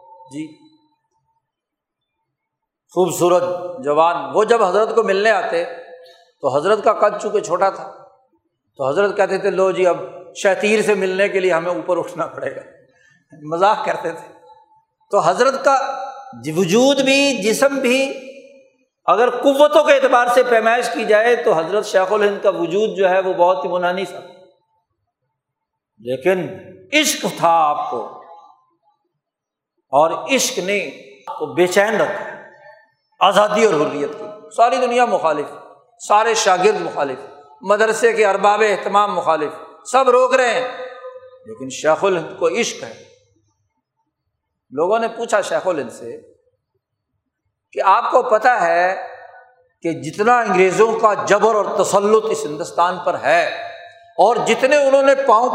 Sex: male